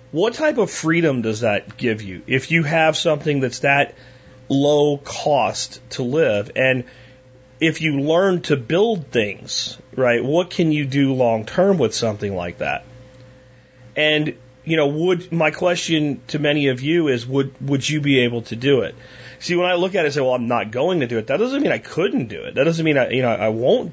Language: English